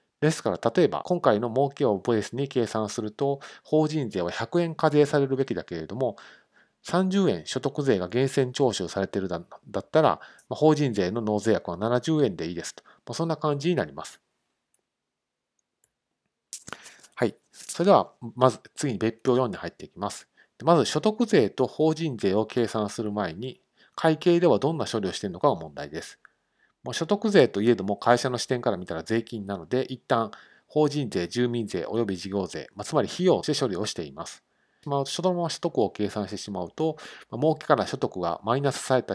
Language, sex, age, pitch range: Japanese, male, 40-59, 110-155 Hz